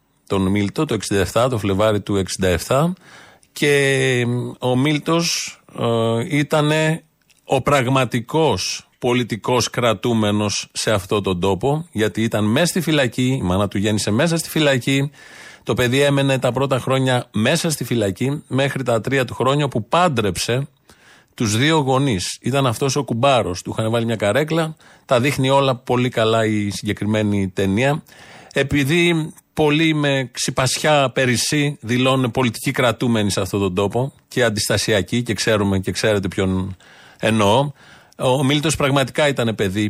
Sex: male